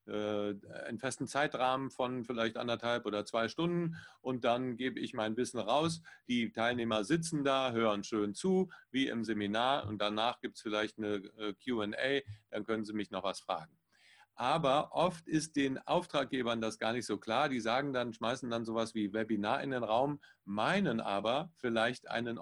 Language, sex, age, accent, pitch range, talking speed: German, male, 40-59, German, 110-135 Hz, 175 wpm